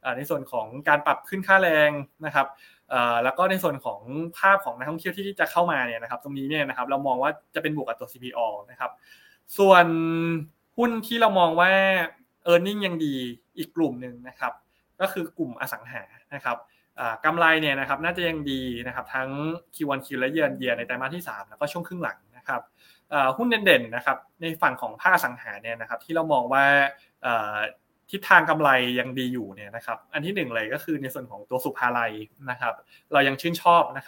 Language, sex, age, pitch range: Thai, male, 20-39, 125-165 Hz